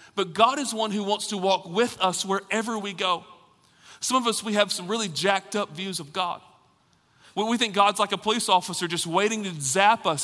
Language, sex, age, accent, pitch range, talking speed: English, male, 40-59, American, 175-215 Hz, 215 wpm